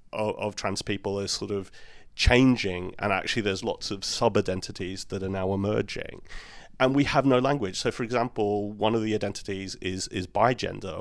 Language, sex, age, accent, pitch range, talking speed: English, male, 30-49, British, 100-125 Hz, 180 wpm